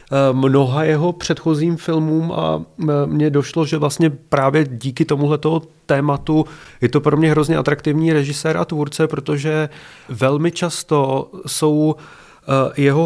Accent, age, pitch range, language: native, 30-49, 135-155 Hz, Czech